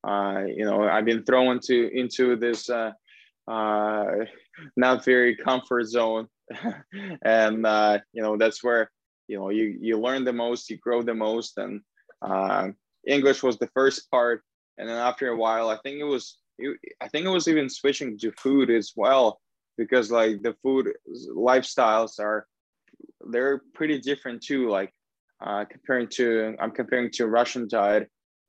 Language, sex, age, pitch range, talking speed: English, male, 20-39, 105-125 Hz, 160 wpm